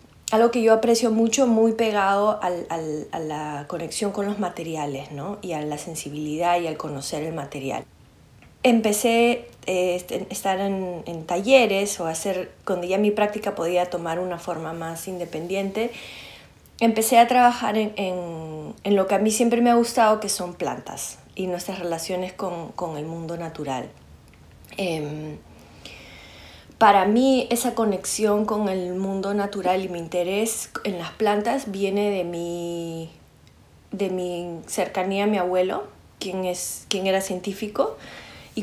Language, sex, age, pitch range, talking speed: Spanish, female, 30-49, 175-210 Hz, 155 wpm